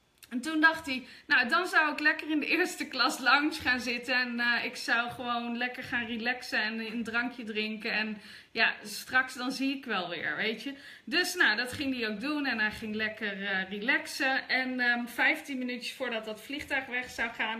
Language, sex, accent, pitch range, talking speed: Dutch, female, Dutch, 230-290 Hz, 210 wpm